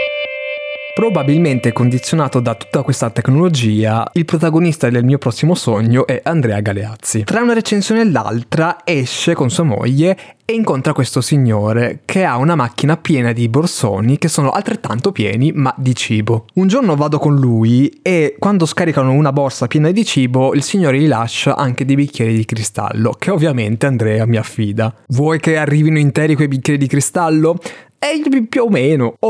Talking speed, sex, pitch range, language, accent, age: 165 wpm, male, 115-160 Hz, Italian, native, 20-39